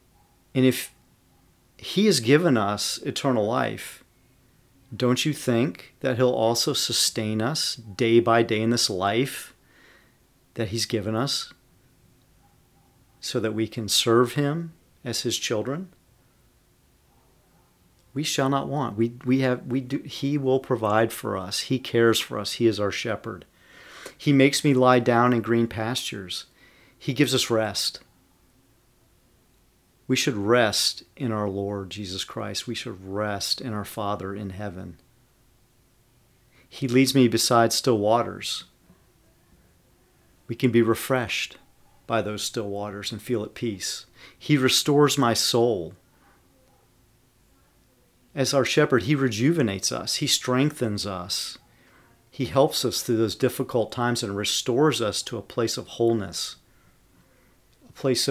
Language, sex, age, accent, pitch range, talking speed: English, male, 40-59, American, 110-130 Hz, 135 wpm